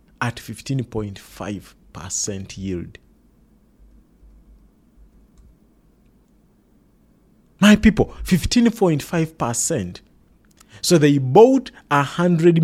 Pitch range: 115-165 Hz